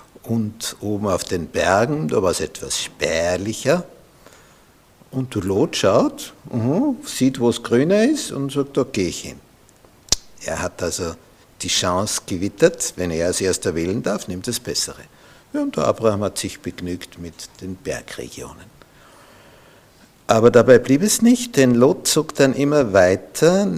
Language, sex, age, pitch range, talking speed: German, male, 60-79, 105-150 Hz, 160 wpm